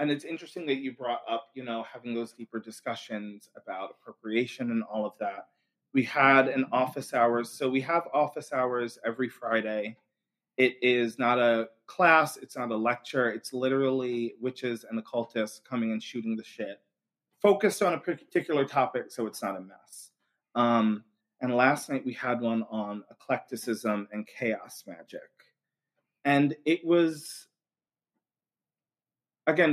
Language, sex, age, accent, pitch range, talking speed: English, male, 30-49, American, 115-140 Hz, 155 wpm